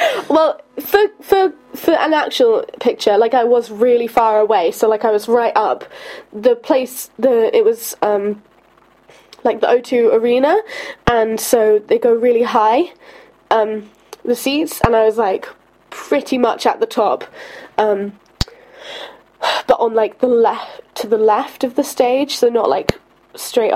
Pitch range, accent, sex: 240-385 Hz, British, female